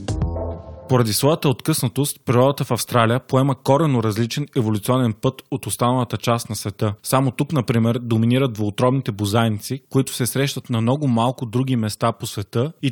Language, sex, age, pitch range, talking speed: Bulgarian, male, 20-39, 110-130 Hz, 155 wpm